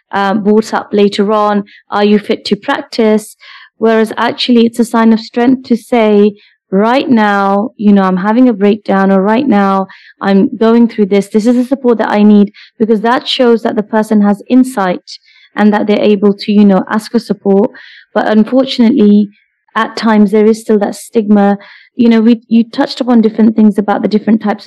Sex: female